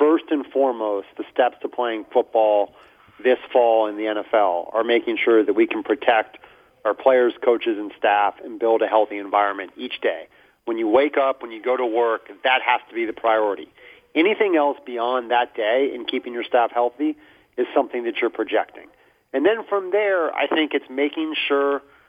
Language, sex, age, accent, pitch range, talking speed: English, male, 40-59, American, 115-145 Hz, 195 wpm